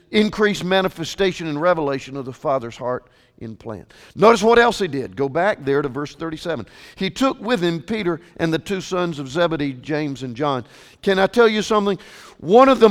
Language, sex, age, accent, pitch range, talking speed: English, male, 50-69, American, 150-215 Hz, 200 wpm